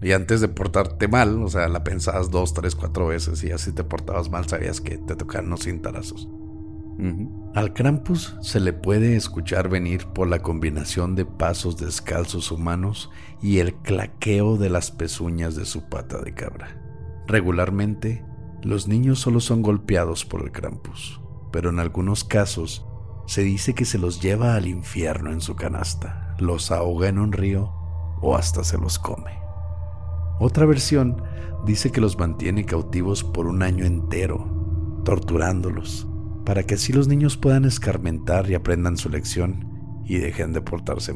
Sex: male